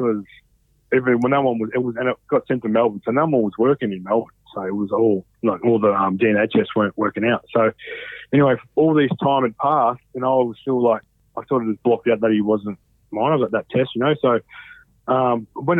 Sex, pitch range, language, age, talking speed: male, 105-130 Hz, English, 30-49, 260 wpm